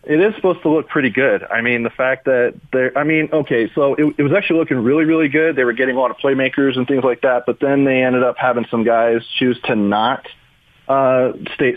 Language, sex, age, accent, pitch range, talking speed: English, male, 30-49, American, 115-135 Hz, 255 wpm